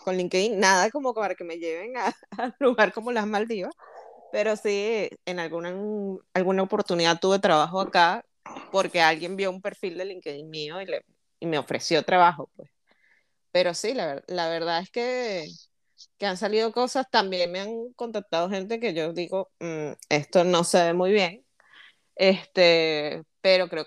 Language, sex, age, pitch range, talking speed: Spanish, female, 20-39, 165-210 Hz, 170 wpm